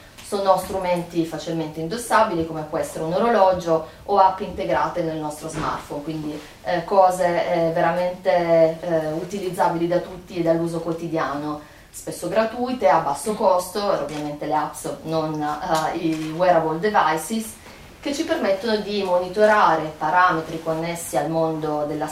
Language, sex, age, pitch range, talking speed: Italian, female, 30-49, 155-190 Hz, 135 wpm